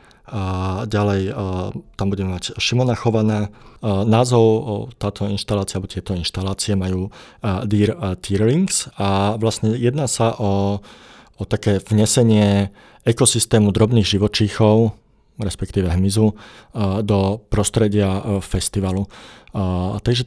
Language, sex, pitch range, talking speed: Slovak, male, 100-110 Hz, 115 wpm